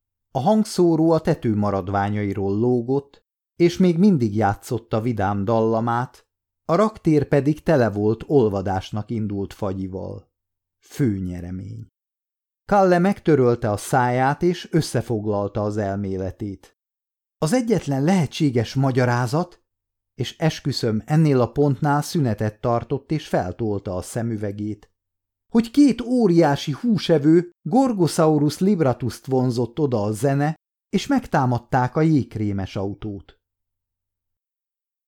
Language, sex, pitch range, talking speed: Hungarian, male, 105-150 Hz, 105 wpm